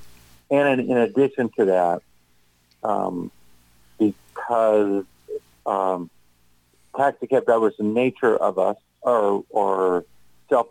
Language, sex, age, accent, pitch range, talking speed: English, male, 40-59, American, 85-110 Hz, 100 wpm